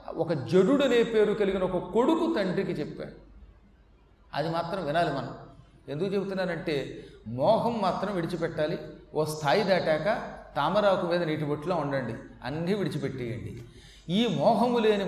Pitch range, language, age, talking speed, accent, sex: 160-220 Hz, Telugu, 30-49, 125 wpm, native, male